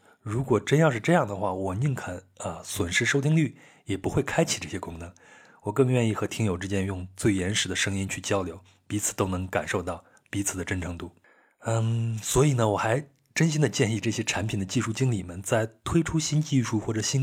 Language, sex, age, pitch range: Chinese, male, 20-39, 95-120 Hz